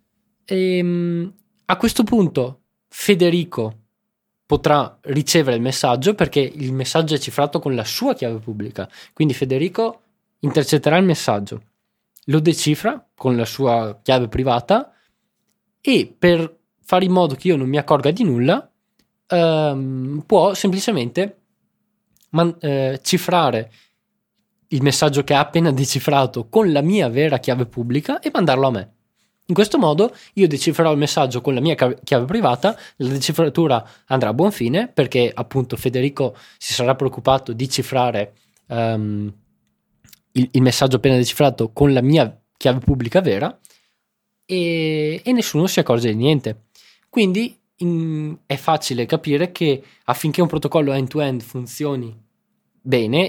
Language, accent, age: Italian, native, 20-39